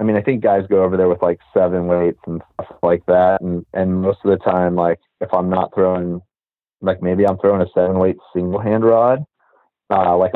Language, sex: English, male